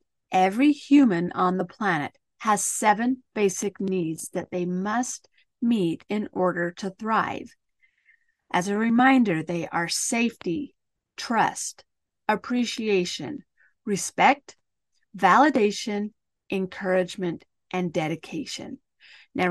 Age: 40-59